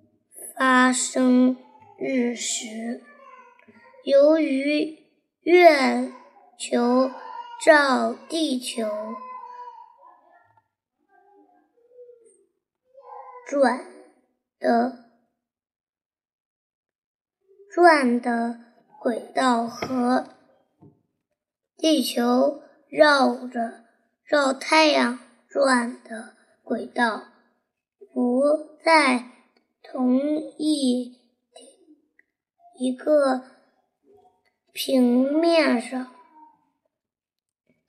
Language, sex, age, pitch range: Chinese, male, 20-39, 245-320 Hz